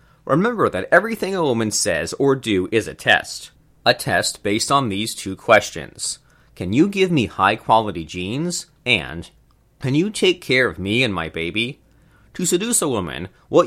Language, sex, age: English, male, 30-49